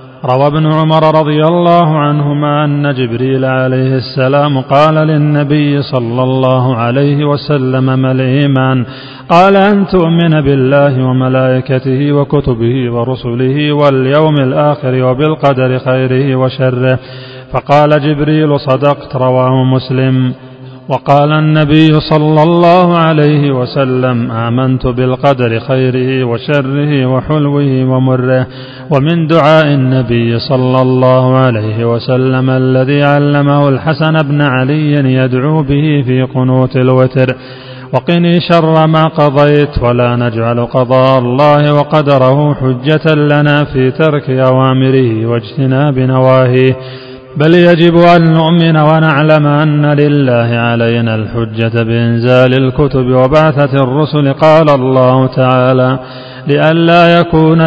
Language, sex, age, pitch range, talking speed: Arabic, male, 40-59, 130-150 Hz, 100 wpm